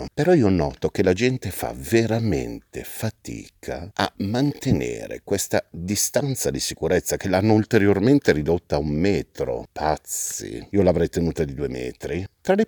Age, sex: 50-69, male